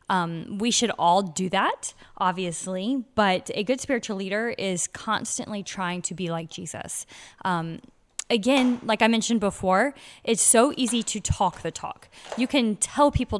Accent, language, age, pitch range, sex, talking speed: American, English, 20-39, 175-225 Hz, female, 160 wpm